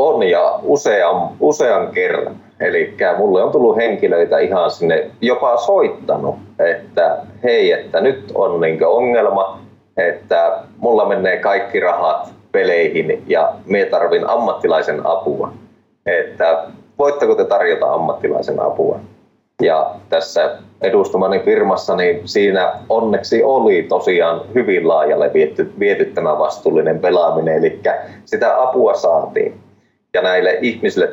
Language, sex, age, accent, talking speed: Finnish, male, 20-39, native, 115 wpm